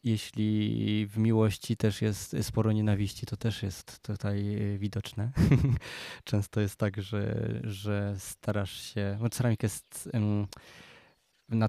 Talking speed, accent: 120 wpm, native